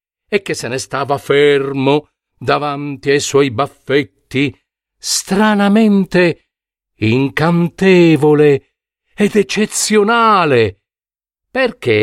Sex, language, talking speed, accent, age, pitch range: male, Italian, 75 wpm, native, 50-69, 115-180 Hz